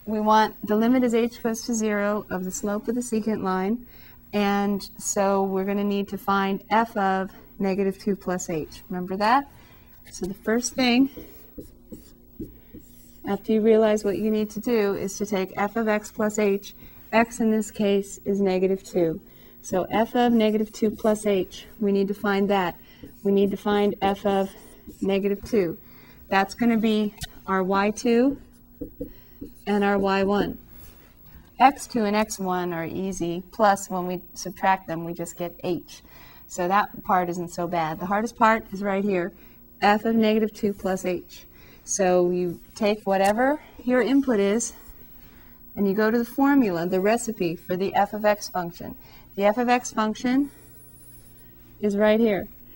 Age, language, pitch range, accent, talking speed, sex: 30-49, English, 195-220 Hz, American, 170 wpm, female